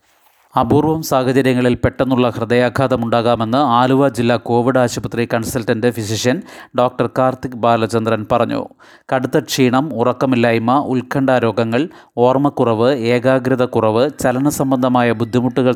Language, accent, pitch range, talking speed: Malayalam, native, 120-135 Hz, 90 wpm